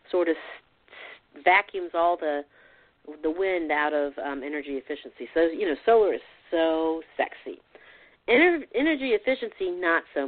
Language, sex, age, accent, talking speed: English, female, 40-59, American, 140 wpm